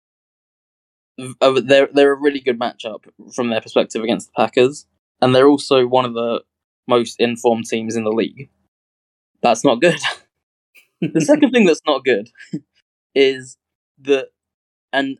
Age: 10-29